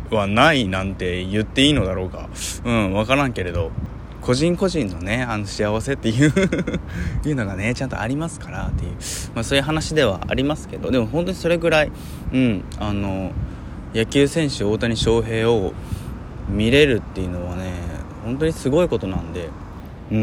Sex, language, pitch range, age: male, Japanese, 95-155 Hz, 20-39